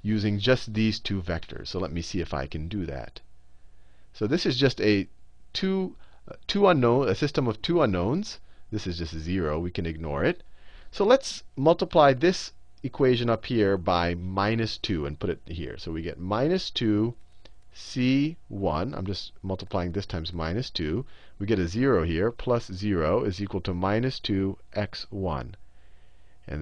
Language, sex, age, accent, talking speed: English, male, 40-59, American, 165 wpm